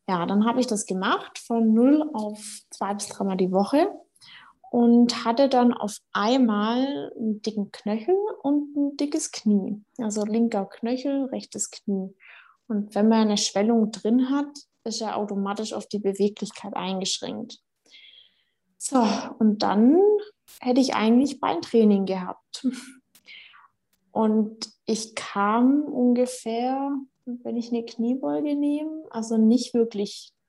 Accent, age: German, 20-39